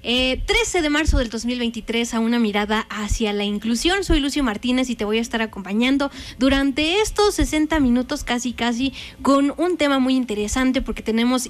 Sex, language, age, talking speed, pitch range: female, Spanish, 20-39, 175 wpm, 225-285 Hz